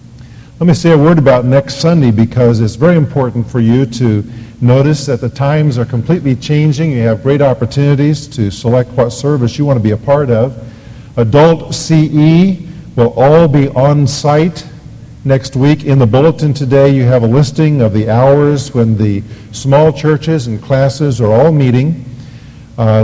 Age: 50-69